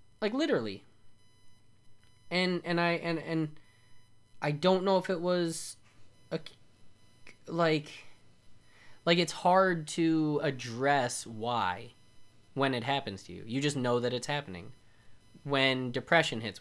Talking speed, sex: 125 wpm, male